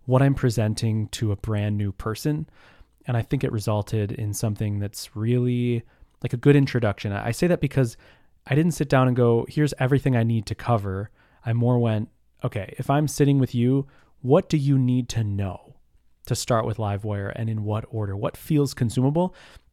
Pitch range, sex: 105-135 Hz, male